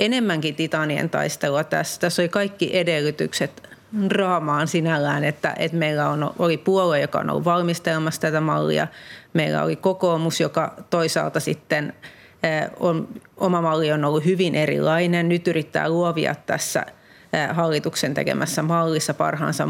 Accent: native